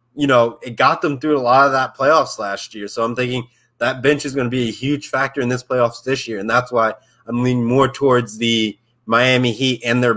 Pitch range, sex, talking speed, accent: 120-145 Hz, male, 250 wpm, American